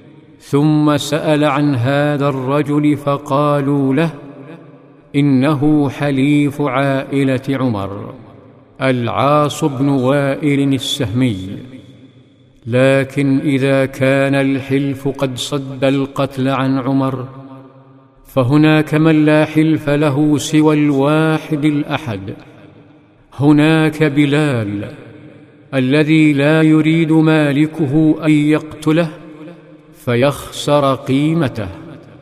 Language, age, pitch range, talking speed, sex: Arabic, 50-69, 135-155 Hz, 80 wpm, male